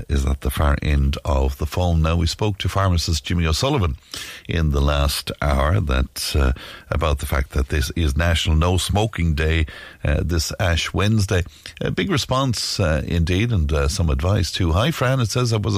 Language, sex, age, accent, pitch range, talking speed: English, male, 60-79, Irish, 80-110 Hz, 195 wpm